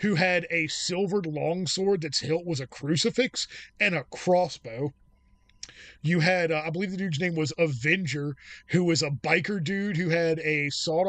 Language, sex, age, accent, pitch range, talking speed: English, male, 20-39, American, 150-170 Hz, 180 wpm